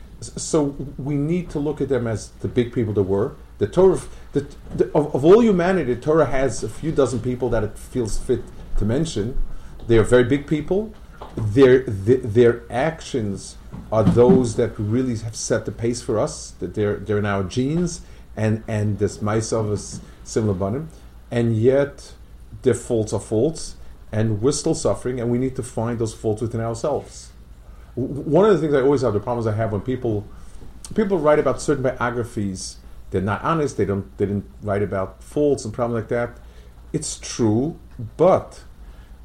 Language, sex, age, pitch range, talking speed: English, male, 40-59, 105-140 Hz, 180 wpm